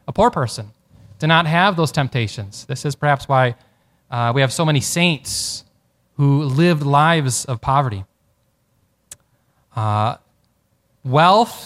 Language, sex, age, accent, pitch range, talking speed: English, male, 20-39, American, 120-175 Hz, 130 wpm